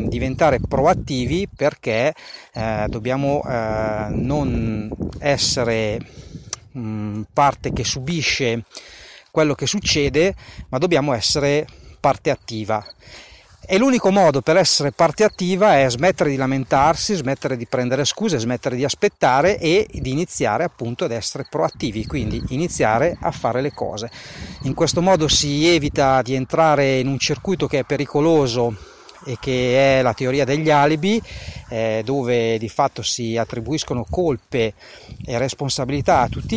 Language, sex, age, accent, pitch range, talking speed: Italian, male, 40-59, native, 115-155 Hz, 135 wpm